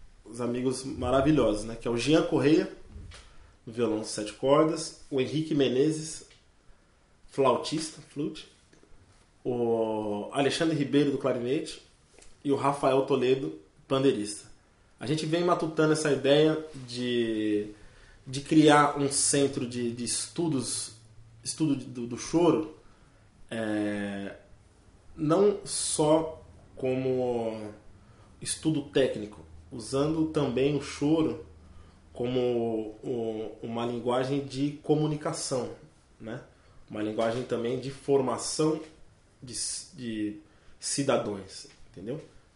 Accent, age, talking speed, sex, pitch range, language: Brazilian, 20-39, 95 wpm, male, 110-150 Hz, English